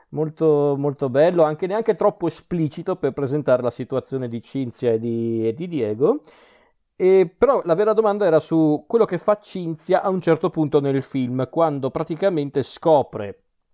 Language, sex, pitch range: Italian, male, 120-155 Hz